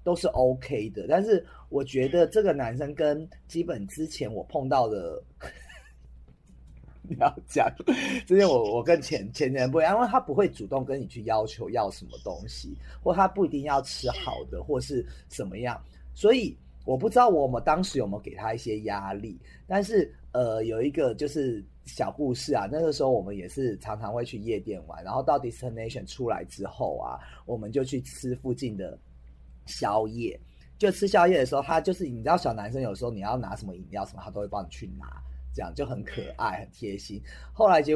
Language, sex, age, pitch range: Chinese, male, 30-49, 95-150 Hz